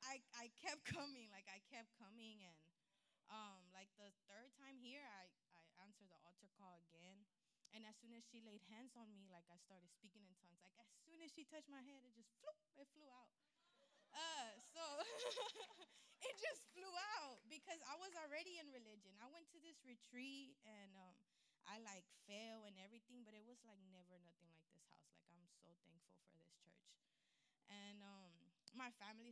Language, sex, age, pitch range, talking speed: English, female, 20-39, 200-280 Hz, 190 wpm